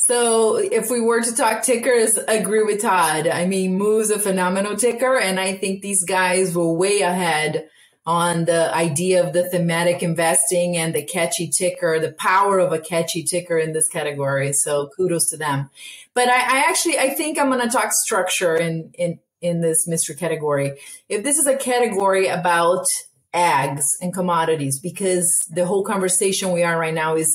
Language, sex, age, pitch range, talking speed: English, female, 30-49, 165-200 Hz, 185 wpm